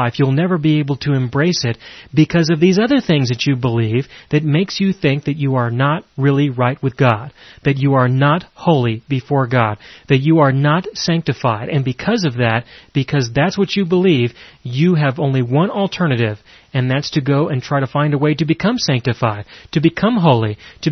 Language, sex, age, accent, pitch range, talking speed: English, male, 30-49, American, 130-165 Hz, 200 wpm